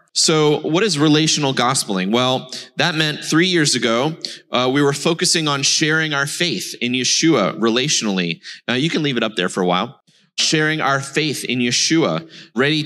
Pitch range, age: 120-160 Hz, 30-49